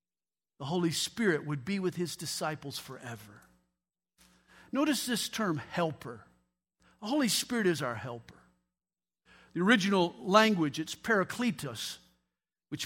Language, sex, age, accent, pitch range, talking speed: English, male, 50-69, American, 150-235 Hz, 115 wpm